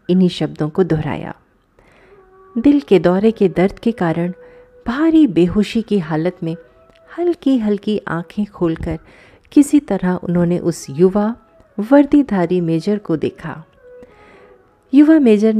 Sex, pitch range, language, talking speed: female, 165-235 Hz, Hindi, 120 wpm